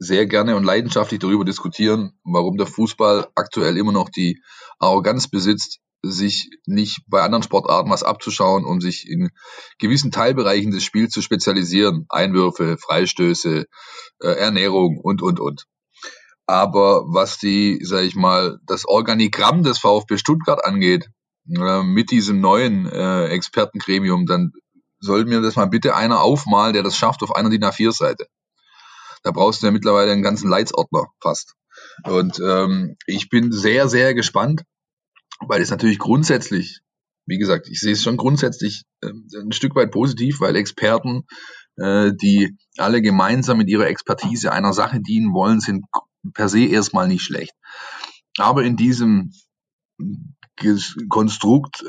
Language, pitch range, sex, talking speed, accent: German, 100-160 Hz, male, 140 wpm, German